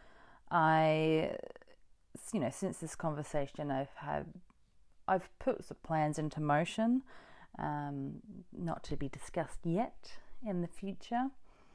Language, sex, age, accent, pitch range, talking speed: English, female, 30-49, Australian, 150-225 Hz, 115 wpm